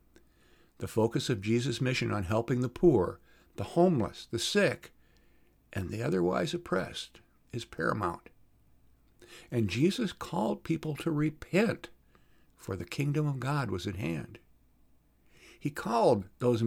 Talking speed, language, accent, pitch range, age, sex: 130 wpm, English, American, 85-145 Hz, 50-69, male